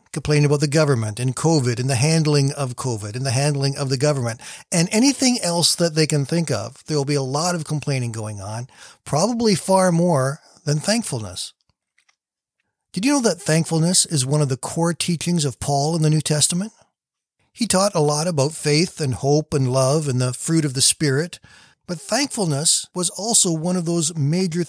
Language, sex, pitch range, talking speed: English, male, 140-180 Hz, 190 wpm